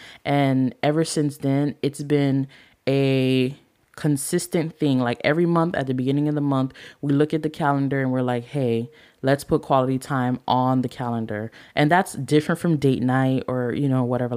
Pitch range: 130-155 Hz